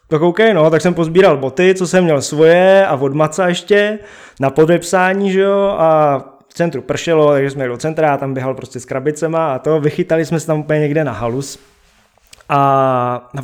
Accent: native